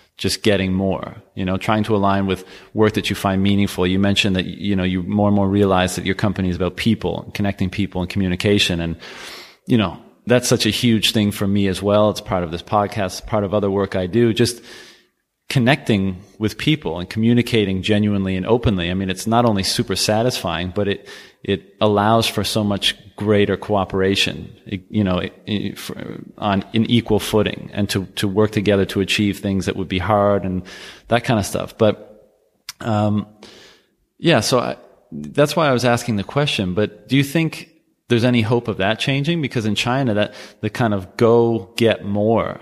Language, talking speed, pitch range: English, 190 wpm, 100-115 Hz